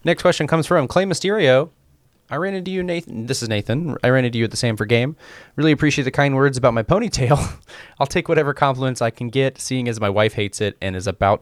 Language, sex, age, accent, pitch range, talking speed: English, male, 20-39, American, 105-140 Hz, 245 wpm